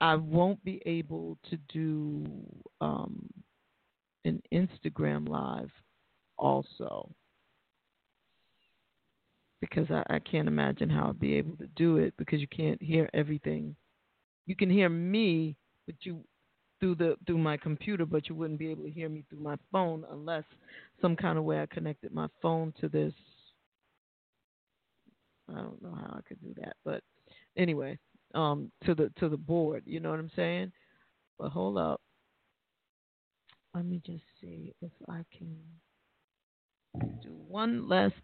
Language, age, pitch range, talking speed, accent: English, 40-59, 150-170 Hz, 150 wpm, American